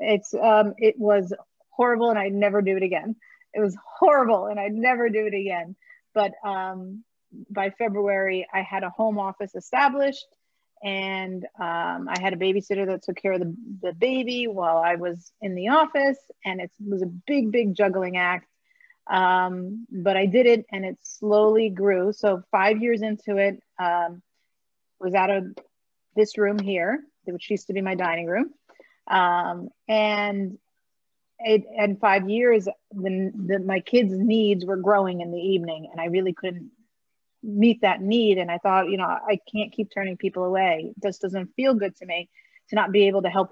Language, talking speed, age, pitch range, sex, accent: English, 180 wpm, 30-49, 185-220 Hz, female, American